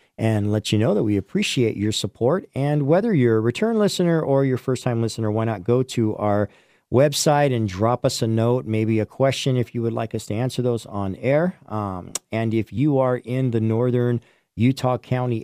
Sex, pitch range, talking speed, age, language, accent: male, 110-135 Hz, 210 wpm, 50-69, English, American